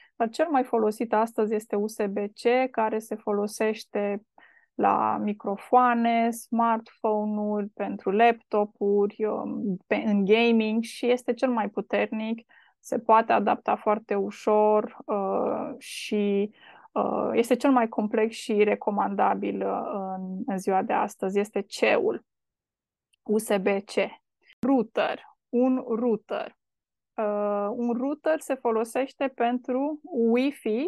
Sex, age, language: female, 20-39, Romanian